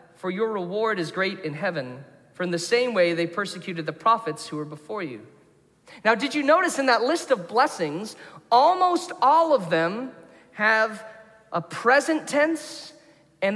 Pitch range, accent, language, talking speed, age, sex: 190-295 Hz, American, English, 170 wpm, 40-59, male